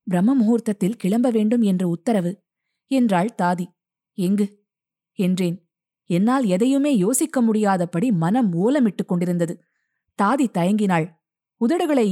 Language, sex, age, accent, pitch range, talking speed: Tamil, female, 20-39, native, 175-235 Hz, 95 wpm